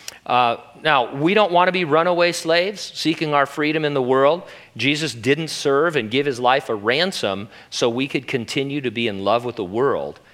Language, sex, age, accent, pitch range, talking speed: English, male, 40-59, American, 115-145 Hz, 205 wpm